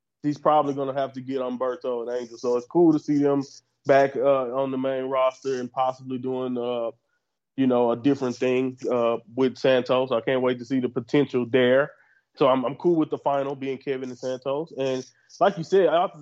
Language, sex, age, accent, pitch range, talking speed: English, male, 20-39, American, 135-165 Hz, 215 wpm